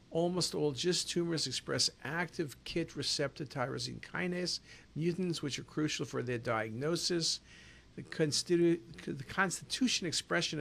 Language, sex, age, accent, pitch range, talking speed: English, male, 50-69, American, 135-170 Hz, 125 wpm